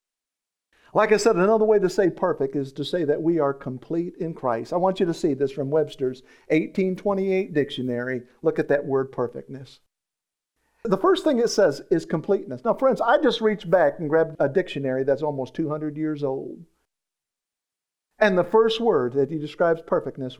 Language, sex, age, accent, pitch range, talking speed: English, male, 50-69, American, 135-190 Hz, 180 wpm